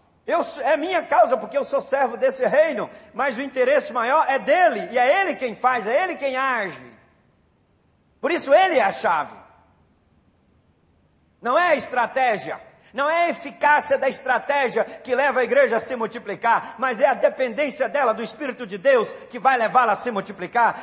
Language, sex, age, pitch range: Portuguese, male, 40-59, 220-270 Hz